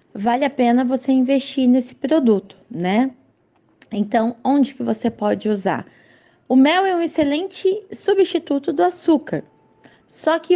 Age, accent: 20-39, Brazilian